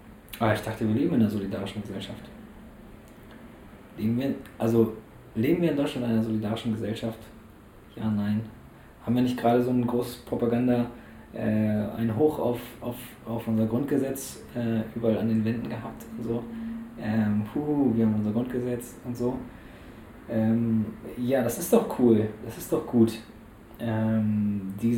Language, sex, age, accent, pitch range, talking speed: German, male, 20-39, German, 110-120 Hz, 160 wpm